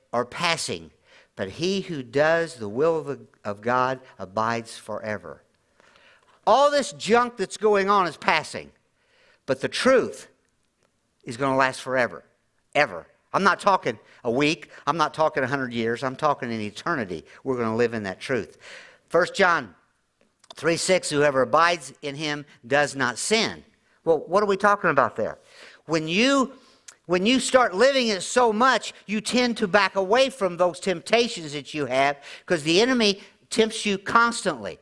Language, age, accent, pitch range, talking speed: English, 50-69, American, 150-235 Hz, 165 wpm